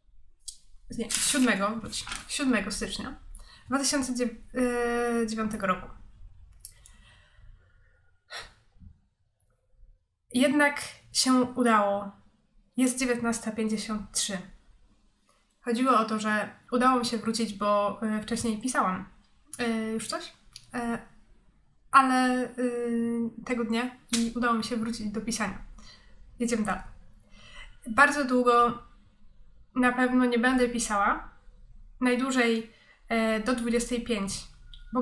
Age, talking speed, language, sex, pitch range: 20-39, 80 wpm, Polish, female, 205-250 Hz